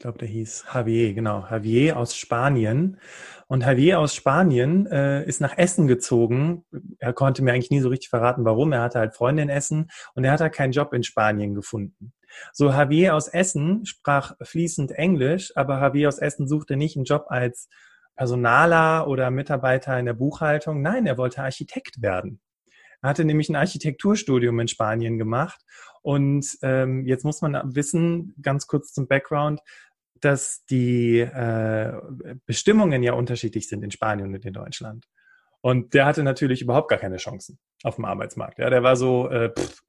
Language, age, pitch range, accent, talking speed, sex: German, 30-49, 120-150 Hz, German, 175 wpm, male